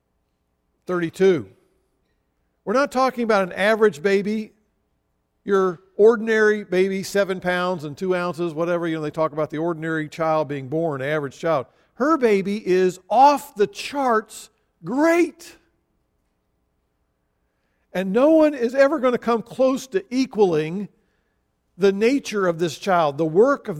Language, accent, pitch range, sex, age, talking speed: English, American, 160-225 Hz, male, 50-69, 140 wpm